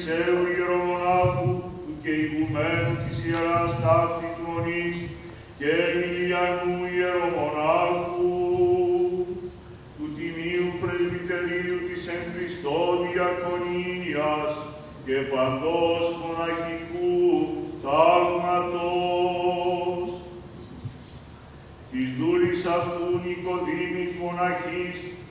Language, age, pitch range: Greek, 40-59, 165-180 Hz